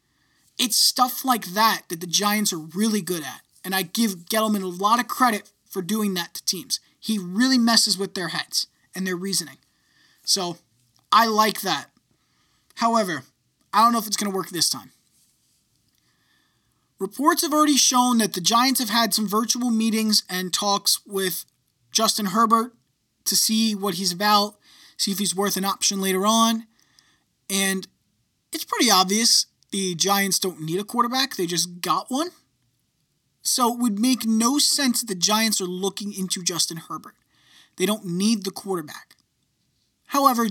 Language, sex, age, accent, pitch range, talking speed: English, male, 20-39, American, 180-235 Hz, 165 wpm